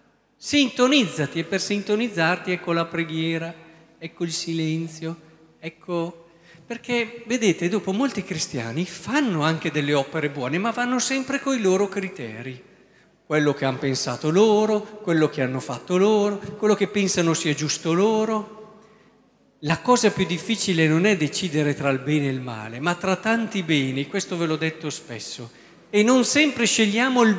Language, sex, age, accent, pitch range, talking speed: Italian, male, 50-69, native, 165-235 Hz, 155 wpm